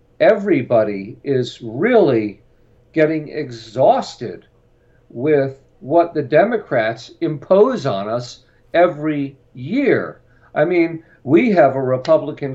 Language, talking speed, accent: English, 95 wpm, American